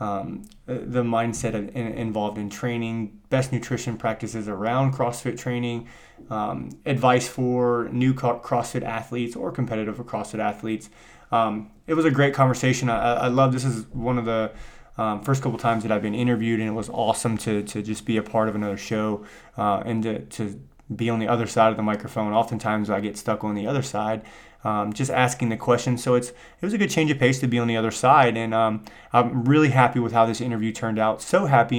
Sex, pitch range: male, 110-125 Hz